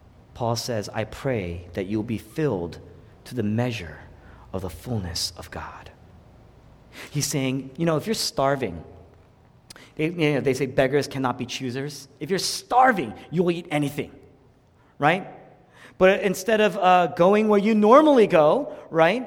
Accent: American